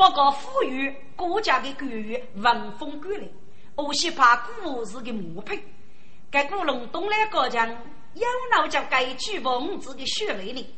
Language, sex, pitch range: Chinese, female, 235-345 Hz